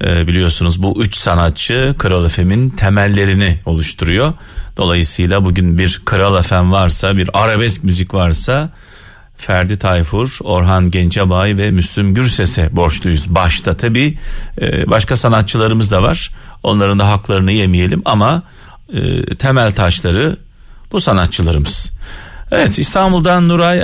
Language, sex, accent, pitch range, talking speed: Turkish, male, native, 95-140 Hz, 105 wpm